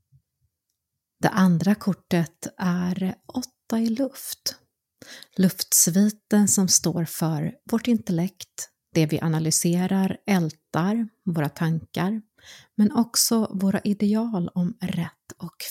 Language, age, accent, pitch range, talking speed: Swedish, 30-49, native, 170-210 Hz, 100 wpm